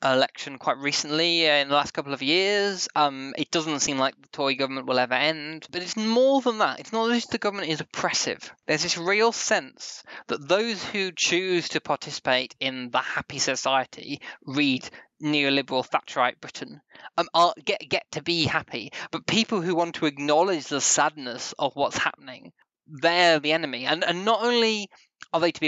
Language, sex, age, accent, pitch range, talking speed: English, male, 20-39, British, 145-185 Hz, 185 wpm